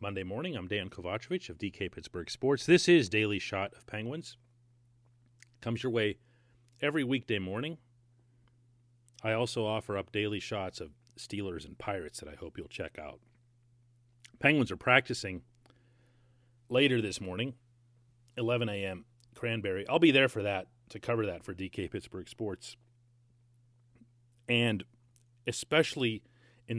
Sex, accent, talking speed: male, American, 135 wpm